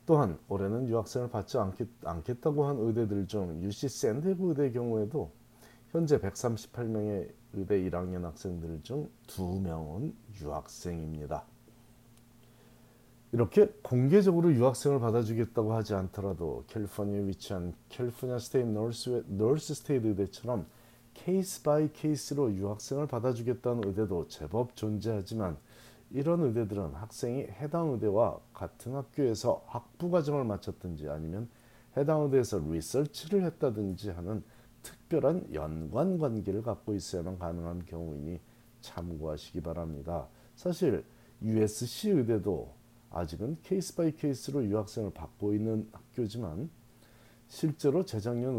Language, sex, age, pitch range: Korean, male, 40-59, 100-130 Hz